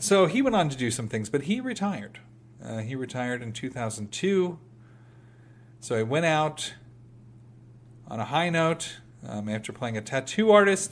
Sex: male